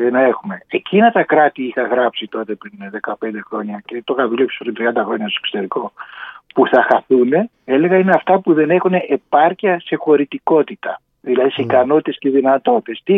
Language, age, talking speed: Greek, 60-79, 160 wpm